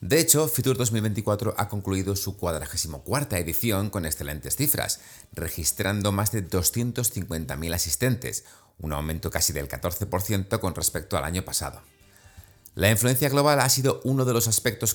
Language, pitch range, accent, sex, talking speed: Spanish, 85-110 Hz, Spanish, male, 150 wpm